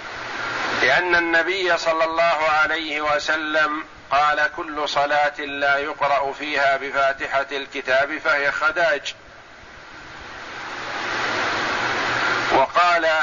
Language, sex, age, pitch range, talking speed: Arabic, male, 50-69, 150-175 Hz, 75 wpm